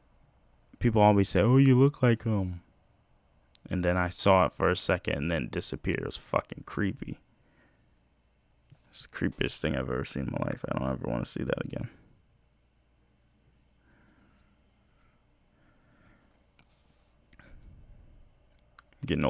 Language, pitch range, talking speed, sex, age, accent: English, 85-110 Hz, 130 wpm, male, 20-39, American